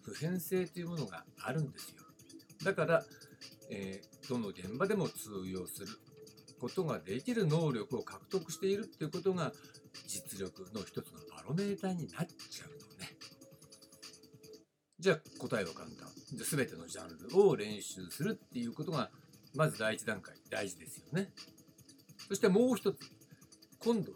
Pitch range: 130-190 Hz